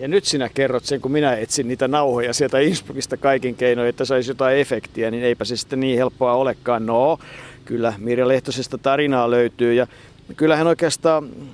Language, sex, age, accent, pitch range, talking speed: Finnish, male, 50-69, native, 120-140 Hz, 175 wpm